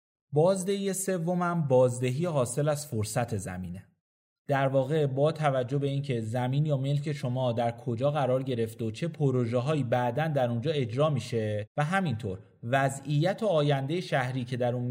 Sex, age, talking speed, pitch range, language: male, 30-49, 155 wpm, 120-150 Hz, Persian